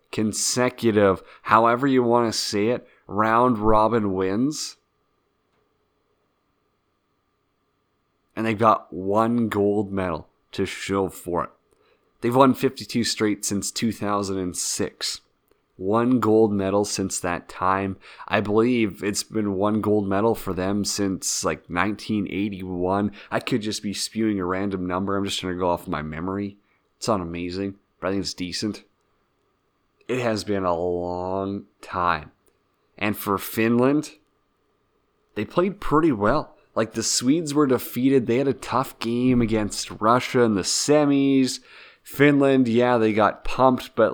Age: 30-49